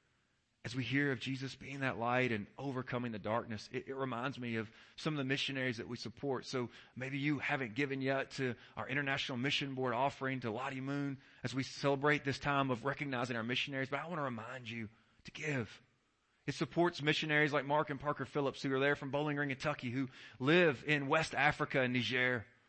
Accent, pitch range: American, 125-180 Hz